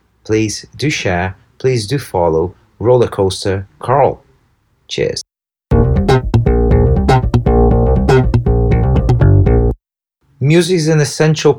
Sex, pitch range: male, 100-135 Hz